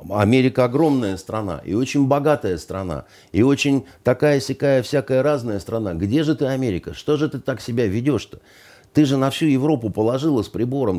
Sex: male